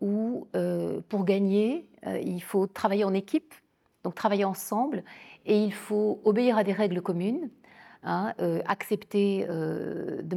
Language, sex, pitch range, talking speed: French, female, 190-230 Hz, 150 wpm